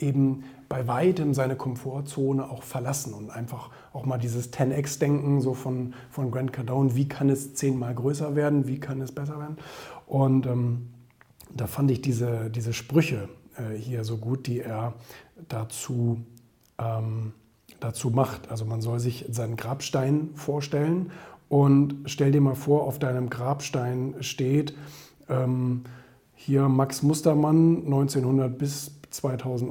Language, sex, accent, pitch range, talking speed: German, male, German, 125-150 Hz, 140 wpm